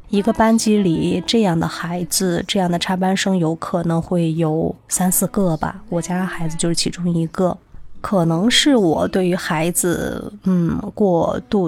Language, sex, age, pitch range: Chinese, female, 20-39, 170-205 Hz